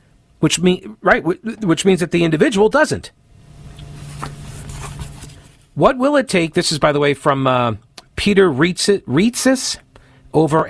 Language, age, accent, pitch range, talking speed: English, 50-69, American, 110-165 Hz, 130 wpm